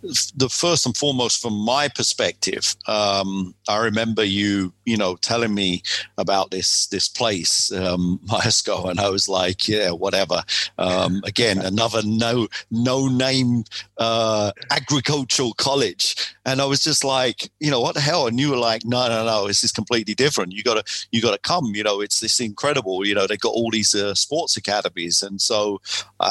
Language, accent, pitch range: English, British, 100-120 Hz